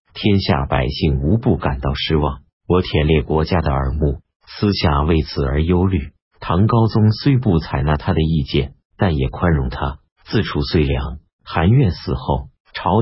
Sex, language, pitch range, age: male, Chinese, 75-95 Hz, 50-69